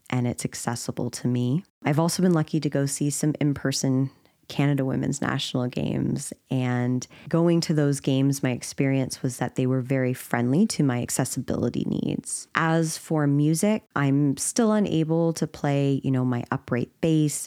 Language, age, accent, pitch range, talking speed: English, 20-39, American, 130-160 Hz, 170 wpm